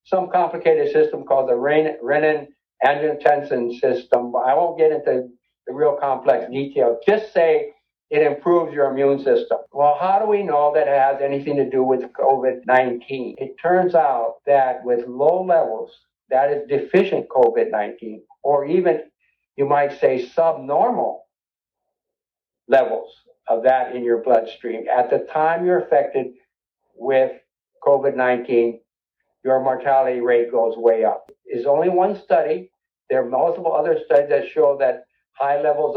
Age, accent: 60-79, American